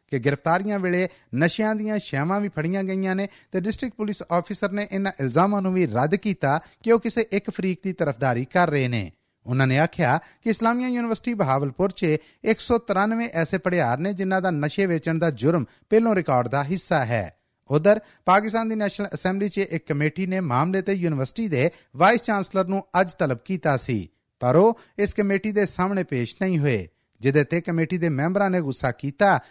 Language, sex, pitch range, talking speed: Punjabi, male, 150-200 Hz, 150 wpm